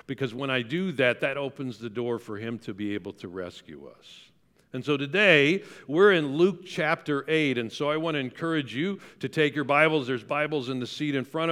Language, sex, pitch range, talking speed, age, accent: English, male, 120-155 Hz, 225 wpm, 50-69, American